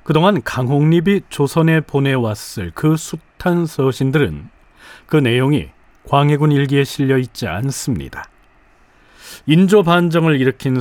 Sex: male